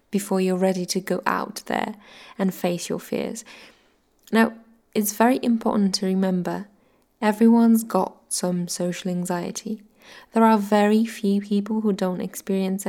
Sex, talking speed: female, 140 wpm